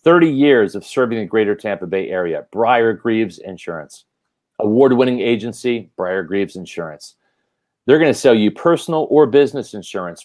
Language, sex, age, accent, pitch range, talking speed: English, male, 40-59, American, 110-145 Hz, 150 wpm